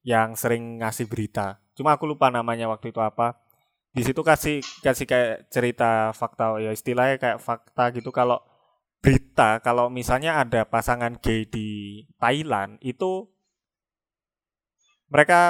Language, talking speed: Indonesian, 130 wpm